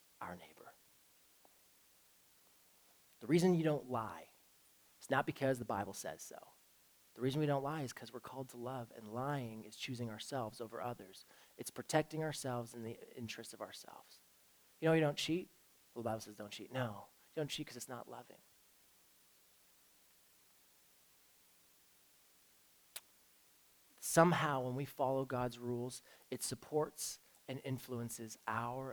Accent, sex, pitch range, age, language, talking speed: American, male, 105-135 Hz, 30-49, English, 145 wpm